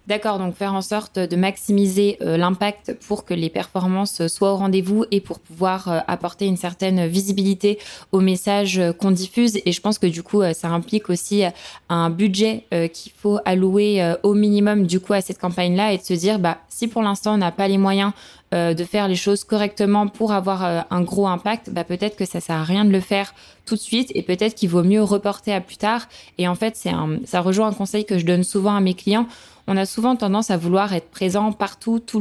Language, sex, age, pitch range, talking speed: French, female, 20-39, 180-205 Hz, 235 wpm